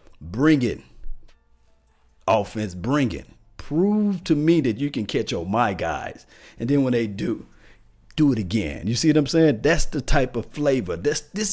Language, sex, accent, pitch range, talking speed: English, male, American, 90-120 Hz, 175 wpm